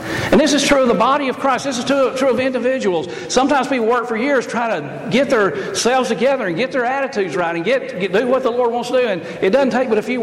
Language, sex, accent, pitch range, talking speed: English, male, American, 220-265 Hz, 275 wpm